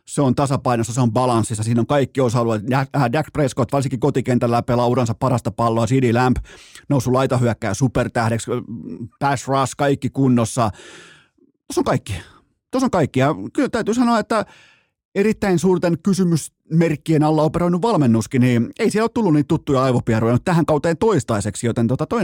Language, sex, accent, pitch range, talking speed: Finnish, male, native, 120-160 Hz, 155 wpm